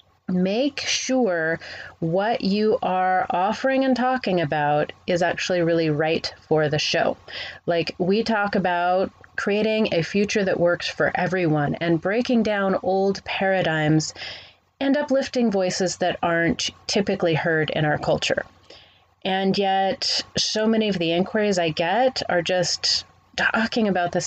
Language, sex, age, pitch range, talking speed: English, female, 30-49, 170-215 Hz, 140 wpm